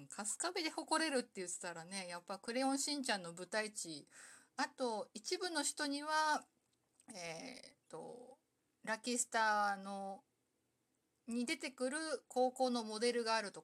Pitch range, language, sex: 190-265 Hz, Japanese, female